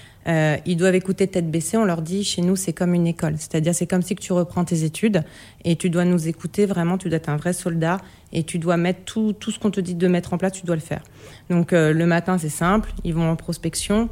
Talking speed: 275 wpm